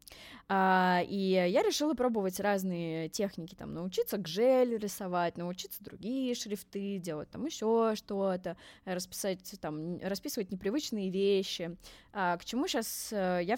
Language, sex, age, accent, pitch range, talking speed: Russian, female, 20-39, native, 185-245 Hz, 115 wpm